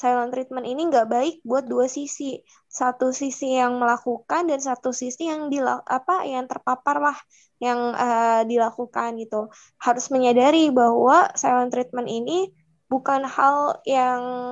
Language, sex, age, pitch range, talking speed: Indonesian, female, 20-39, 240-270 Hz, 140 wpm